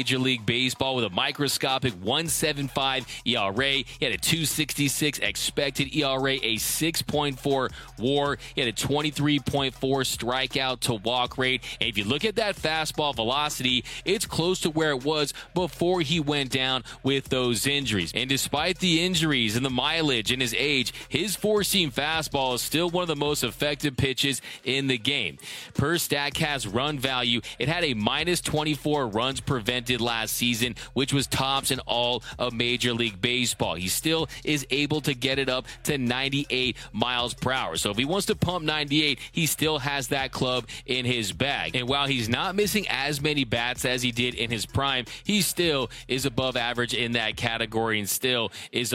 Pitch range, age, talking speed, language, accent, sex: 120-150 Hz, 30-49, 180 wpm, English, American, male